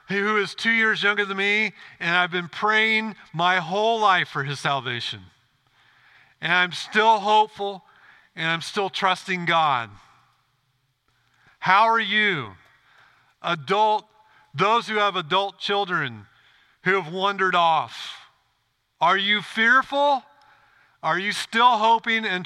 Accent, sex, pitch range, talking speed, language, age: American, male, 145-210 Hz, 125 wpm, English, 50-69